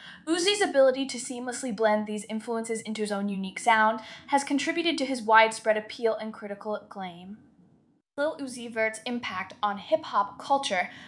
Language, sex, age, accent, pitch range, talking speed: English, female, 10-29, American, 205-260 Hz, 150 wpm